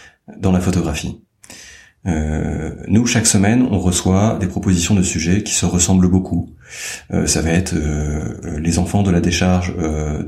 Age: 30-49